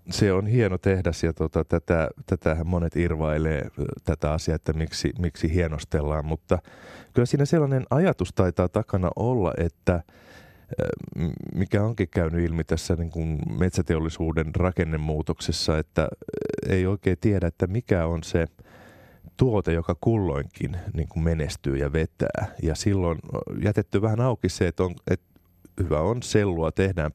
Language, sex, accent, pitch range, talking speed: Finnish, male, native, 80-100 Hz, 140 wpm